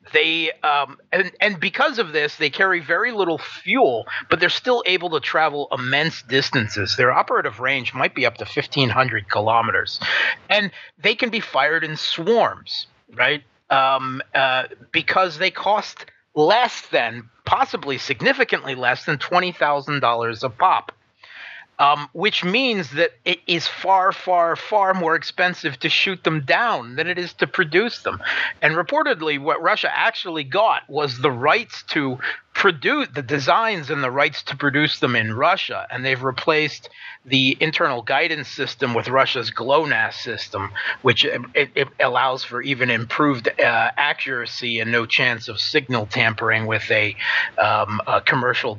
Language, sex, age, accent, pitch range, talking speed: English, male, 40-59, American, 130-175 Hz, 150 wpm